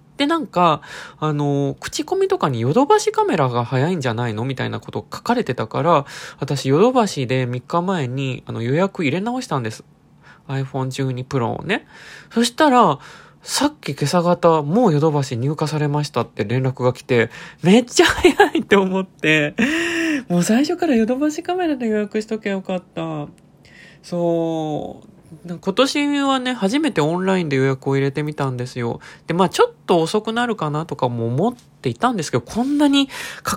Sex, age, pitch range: male, 20-39, 135-215 Hz